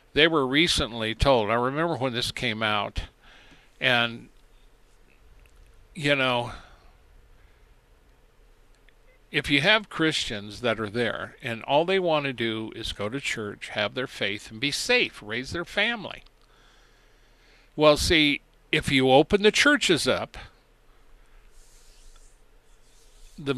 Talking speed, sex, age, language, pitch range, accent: 120 wpm, male, 60-79, English, 115-150 Hz, American